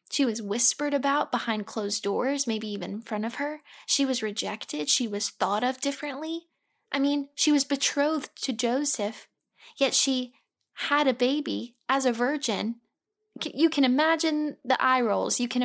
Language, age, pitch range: English, 10-29, 230-285 Hz